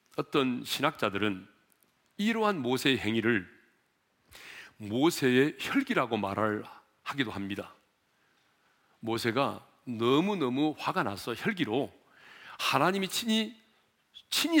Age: 40-59